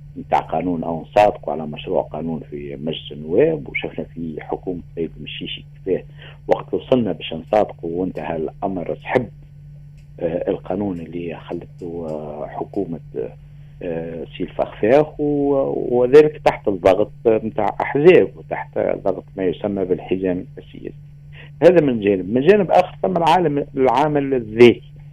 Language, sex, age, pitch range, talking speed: Arabic, male, 50-69, 90-145 Hz, 120 wpm